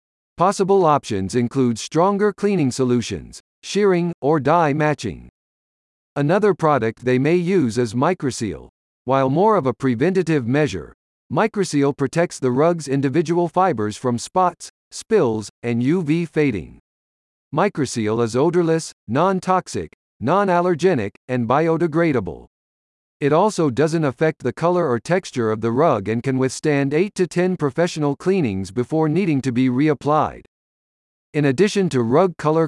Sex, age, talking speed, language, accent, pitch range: male, 50-69, 130 wpm, English, American, 120-175 Hz